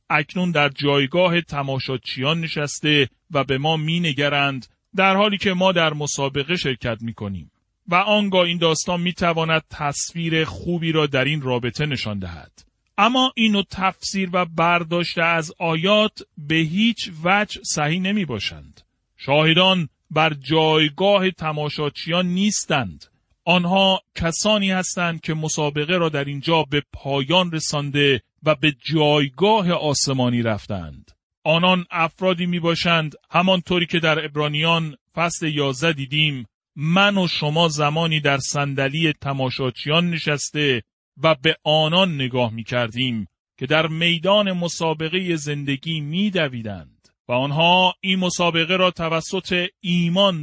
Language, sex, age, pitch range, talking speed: Persian, male, 40-59, 140-180 Hz, 120 wpm